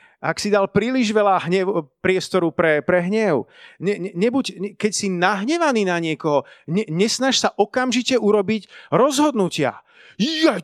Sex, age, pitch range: male, 30-49, 175-225 Hz